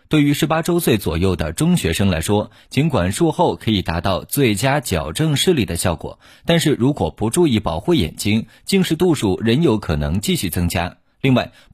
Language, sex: Chinese, male